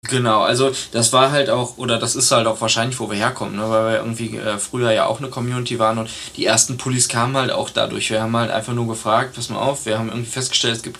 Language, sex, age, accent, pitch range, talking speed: German, male, 20-39, German, 110-125 Hz, 265 wpm